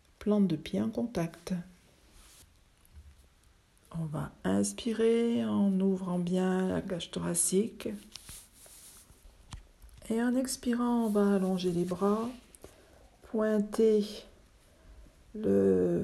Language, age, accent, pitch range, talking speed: French, 50-69, French, 180-230 Hz, 85 wpm